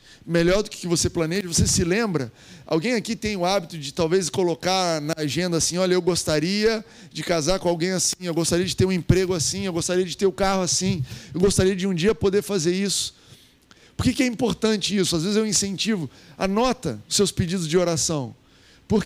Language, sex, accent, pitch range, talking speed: Portuguese, male, Brazilian, 155-195 Hz, 210 wpm